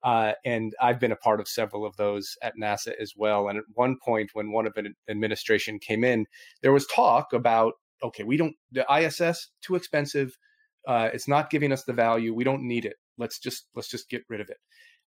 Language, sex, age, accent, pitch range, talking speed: English, male, 30-49, American, 110-140 Hz, 230 wpm